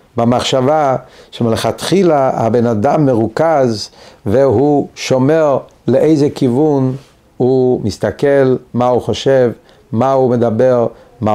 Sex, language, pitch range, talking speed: male, Hebrew, 125-160 Hz, 95 wpm